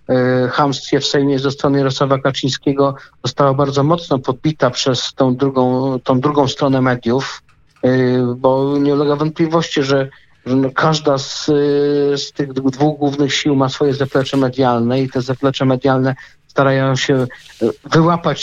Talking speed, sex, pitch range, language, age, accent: 135 wpm, male, 130-145 Hz, Polish, 50-69, native